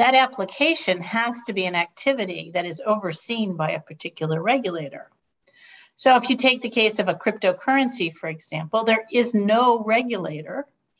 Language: English